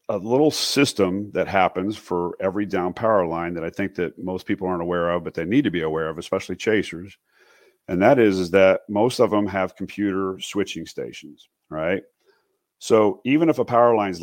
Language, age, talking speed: English, 40-59, 205 wpm